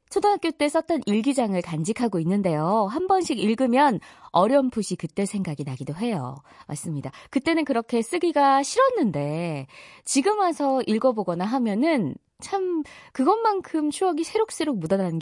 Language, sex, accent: Korean, female, native